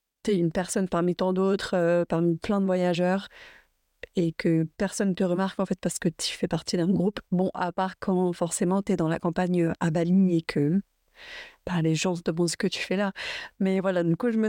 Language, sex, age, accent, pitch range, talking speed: French, female, 30-49, French, 175-205 Hz, 230 wpm